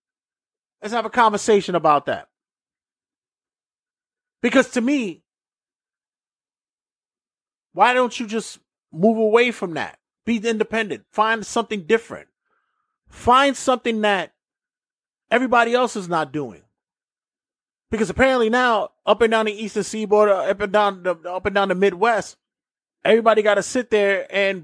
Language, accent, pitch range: English, American, 195-230 Hz